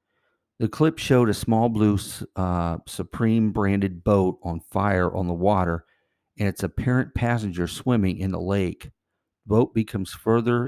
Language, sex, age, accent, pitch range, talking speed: English, male, 50-69, American, 90-110 Hz, 145 wpm